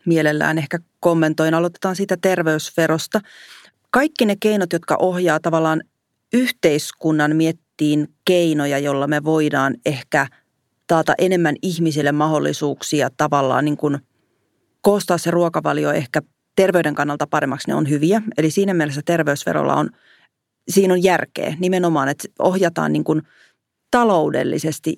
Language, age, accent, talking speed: Finnish, 30-49, native, 120 wpm